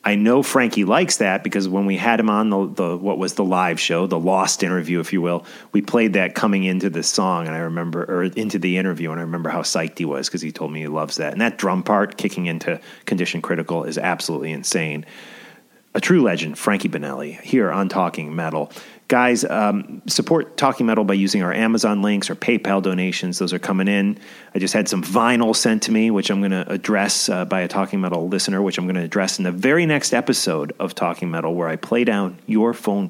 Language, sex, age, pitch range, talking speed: English, male, 30-49, 90-110 Hz, 230 wpm